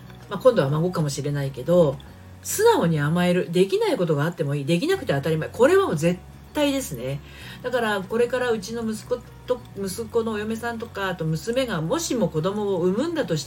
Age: 40-59